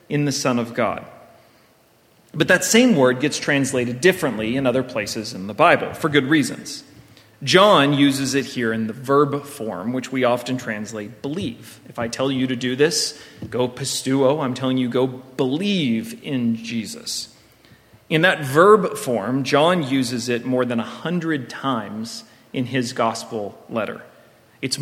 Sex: male